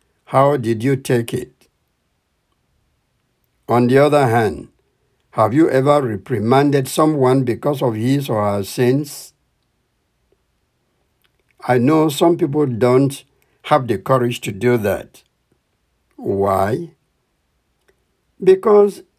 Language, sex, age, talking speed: English, male, 60-79, 105 wpm